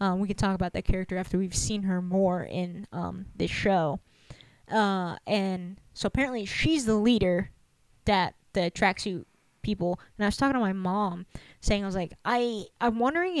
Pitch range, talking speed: 185-215 Hz, 185 wpm